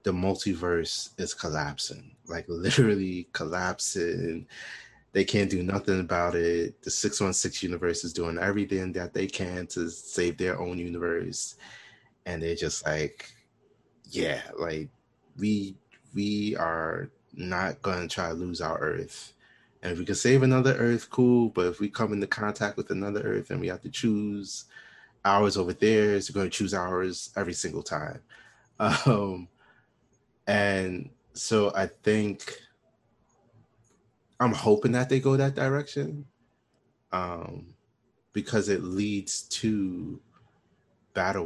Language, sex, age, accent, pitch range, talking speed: English, male, 30-49, American, 85-105 Hz, 135 wpm